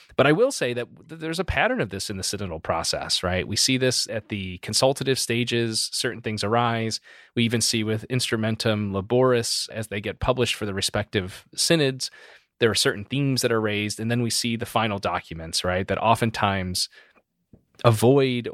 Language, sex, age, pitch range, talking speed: English, male, 30-49, 100-120 Hz, 185 wpm